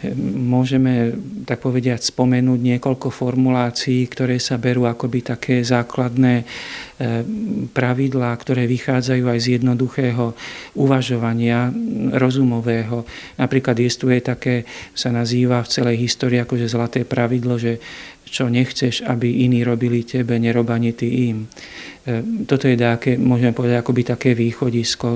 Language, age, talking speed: Slovak, 50-69, 115 wpm